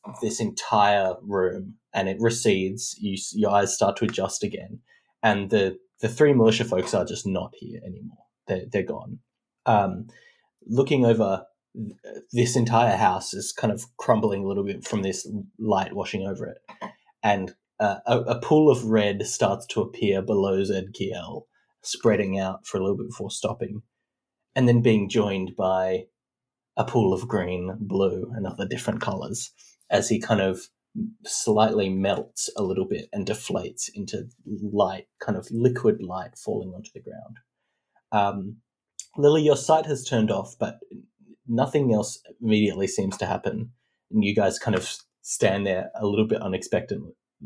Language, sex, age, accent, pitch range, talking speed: English, male, 20-39, Australian, 95-120 Hz, 160 wpm